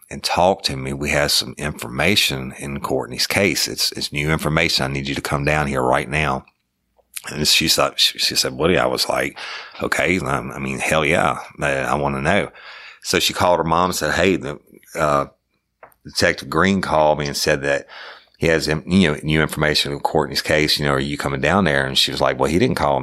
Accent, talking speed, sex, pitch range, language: American, 230 wpm, male, 70-75 Hz, English